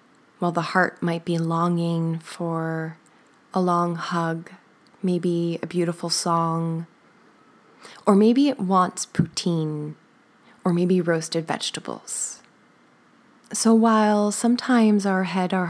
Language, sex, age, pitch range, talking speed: English, female, 20-39, 170-215 Hz, 110 wpm